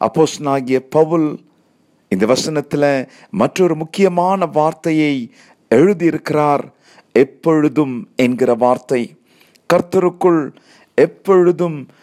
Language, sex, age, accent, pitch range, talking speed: Tamil, male, 50-69, native, 145-180 Hz, 65 wpm